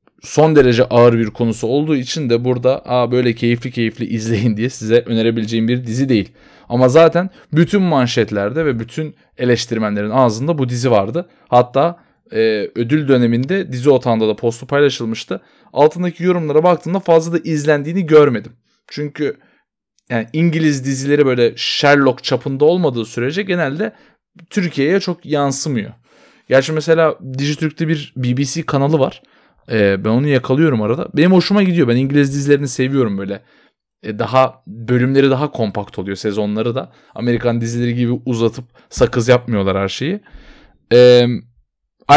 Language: Turkish